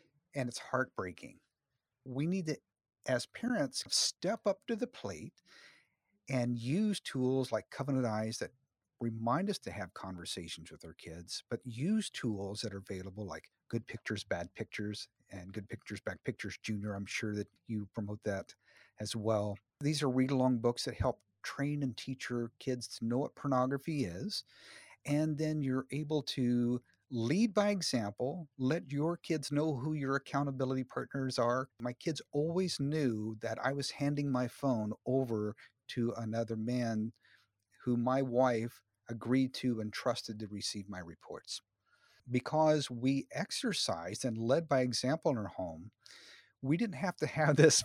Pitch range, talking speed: 110-145 Hz, 160 wpm